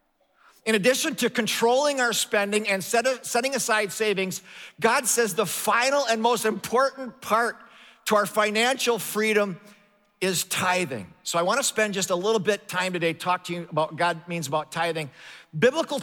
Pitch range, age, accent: 185-245 Hz, 50-69, American